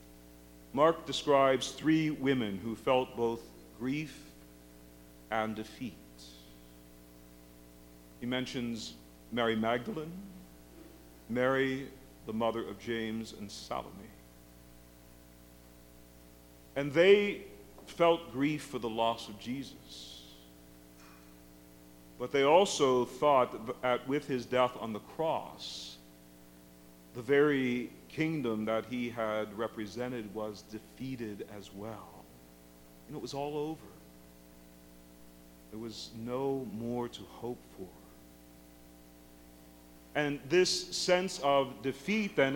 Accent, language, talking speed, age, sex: American, English, 100 wpm, 50-69, male